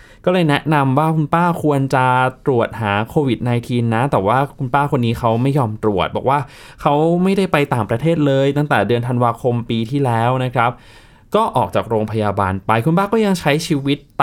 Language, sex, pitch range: Thai, male, 110-150 Hz